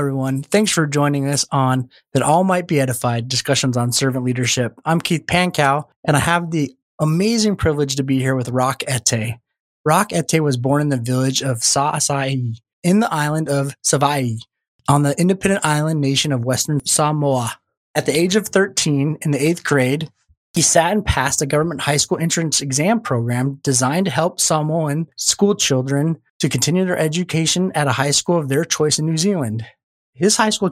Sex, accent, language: male, American, English